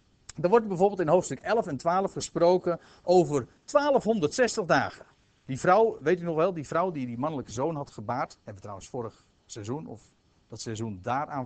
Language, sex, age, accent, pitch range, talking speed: Dutch, male, 60-79, Dutch, 120-160 Hz, 185 wpm